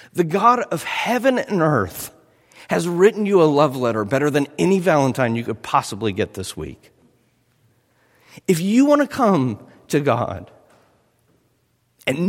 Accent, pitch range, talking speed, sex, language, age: American, 105-155 Hz, 145 wpm, male, English, 50-69